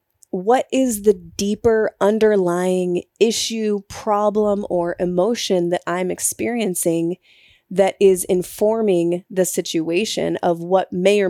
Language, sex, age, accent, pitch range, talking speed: English, female, 20-39, American, 175-200 Hz, 110 wpm